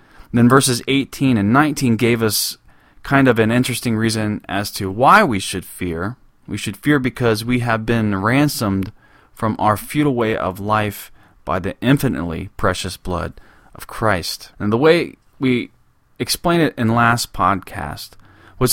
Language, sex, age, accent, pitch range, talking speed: English, male, 30-49, American, 100-130 Hz, 155 wpm